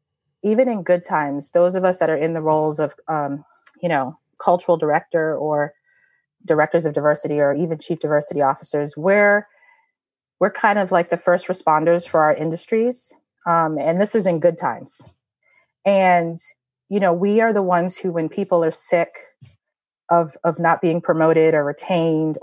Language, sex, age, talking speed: English, female, 30-49, 170 wpm